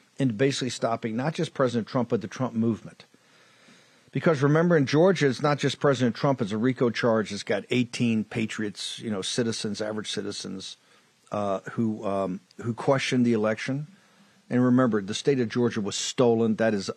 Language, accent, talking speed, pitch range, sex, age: English, American, 175 wpm, 110-140 Hz, male, 50-69